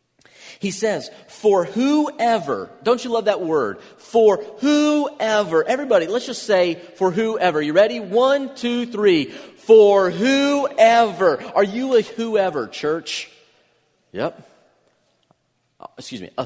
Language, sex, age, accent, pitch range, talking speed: English, male, 40-59, American, 130-215 Hz, 120 wpm